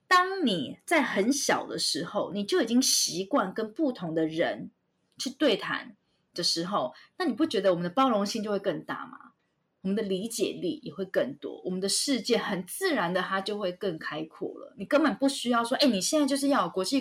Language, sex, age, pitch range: Chinese, female, 20-39, 190-290 Hz